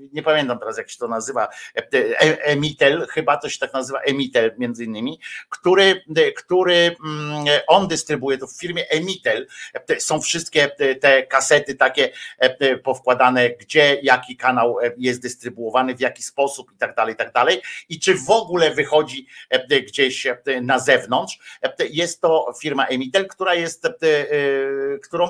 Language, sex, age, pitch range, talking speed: Polish, male, 50-69, 130-170 Hz, 145 wpm